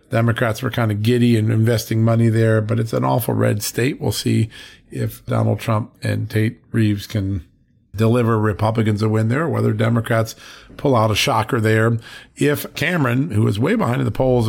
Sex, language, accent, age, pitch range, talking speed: male, English, American, 50-69, 110-125 Hz, 185 wpm